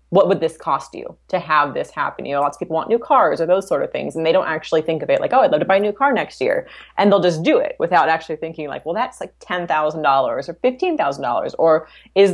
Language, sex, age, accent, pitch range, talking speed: English, female, 20-39, American, 150-185 Hz, 275 wpm